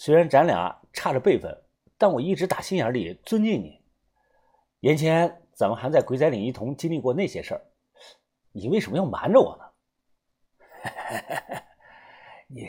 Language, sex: Chinese, male